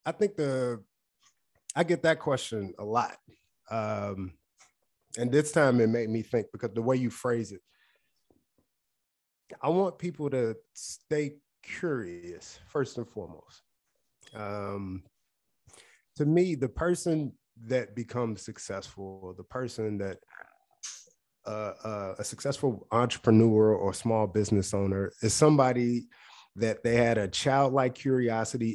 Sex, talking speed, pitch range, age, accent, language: male, 125 wpm, 105-140 Hz, 30-49, American, English